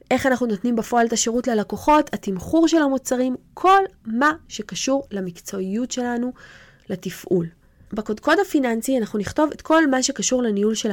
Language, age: Hebrew, 20-39